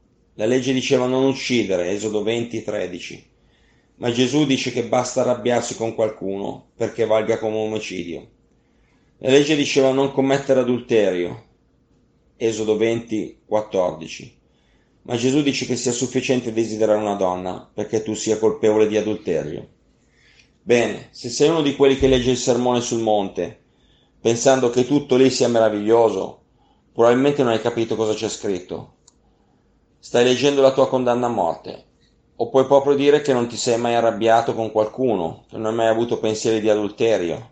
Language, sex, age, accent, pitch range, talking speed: Italian, male, 30-49, native, 110-125 Hz, 150 wpm